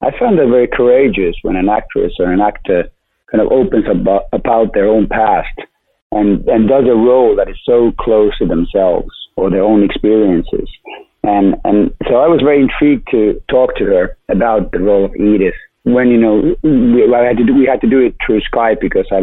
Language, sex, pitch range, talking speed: English, male, 105-140 Hz, 205 wpm